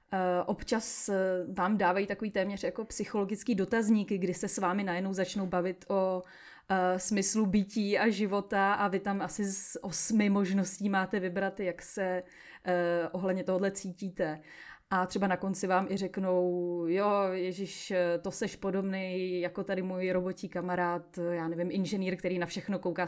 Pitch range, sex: 175-200 Hz, female